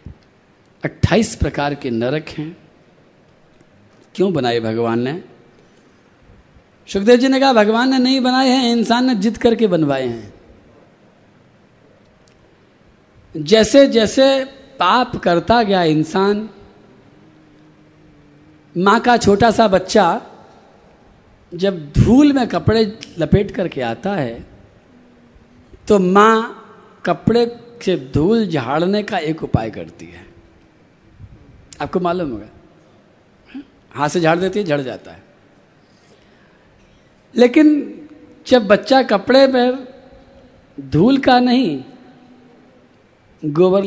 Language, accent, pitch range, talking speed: Hindi, native, 160-250 Hz, 100 wpm